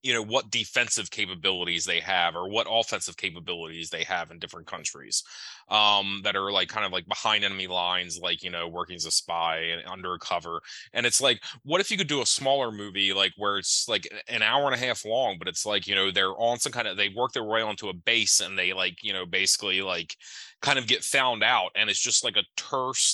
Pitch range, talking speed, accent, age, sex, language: 90-115 Hz, 235 wpm, American, 20-39, male, English